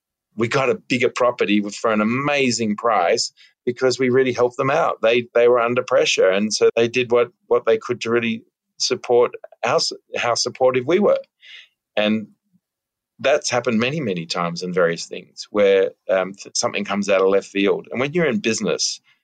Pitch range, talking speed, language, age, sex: 105-150 Hz, 180 wpm, English, 40-59, male